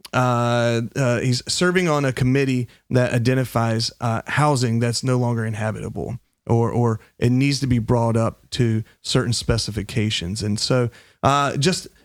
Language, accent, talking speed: English, American, 150 wpm